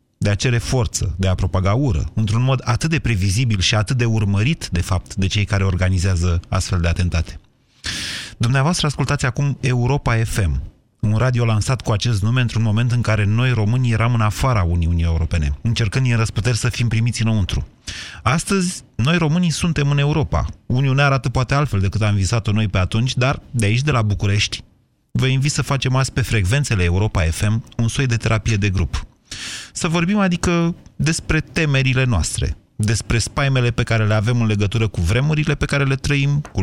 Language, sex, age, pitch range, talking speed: Romanian, male, 30-49, 105-130 Hz, 185 wpm